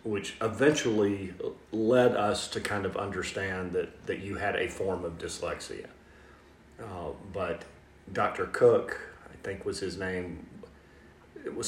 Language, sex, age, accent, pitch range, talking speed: English, male, 40-59, American, 95-115 Hz, 135 wpm